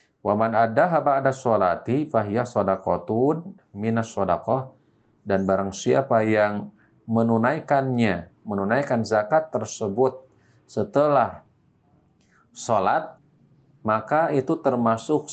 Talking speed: 80 wpm